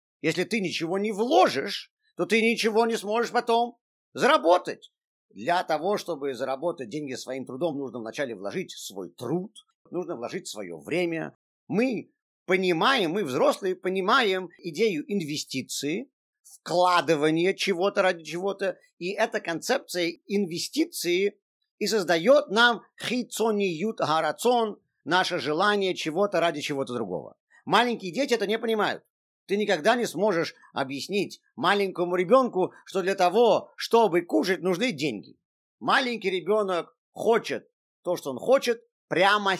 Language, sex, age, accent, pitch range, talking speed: Russian, male, 50-69, native, 145-215 Hz, 125 wpm